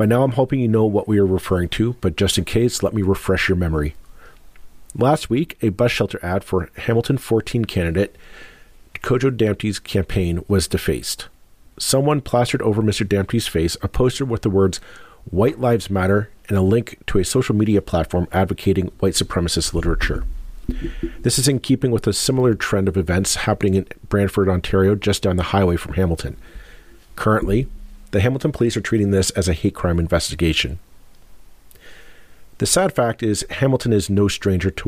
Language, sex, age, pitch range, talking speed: English, male, 40-59, 90-110 Hz, 175 wpm